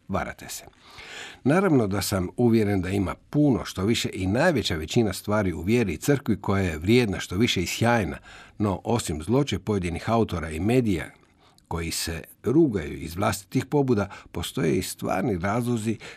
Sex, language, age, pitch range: male, Croatian, 60-79, 95-125 Hz